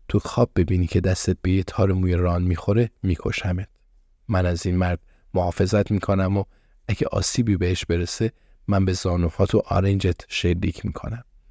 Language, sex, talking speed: Persian, male, 155 wpm